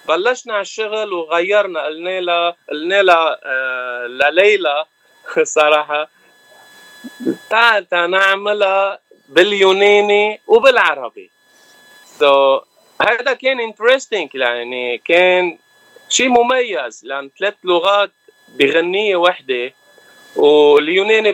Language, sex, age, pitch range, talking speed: Arabic, male, 30-49, 145-210 Hz, 80 wpm